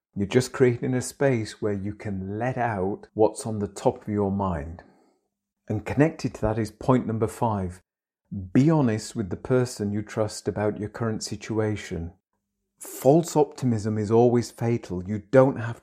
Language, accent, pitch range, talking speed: English, British, 100-125 Hz, 165 wpm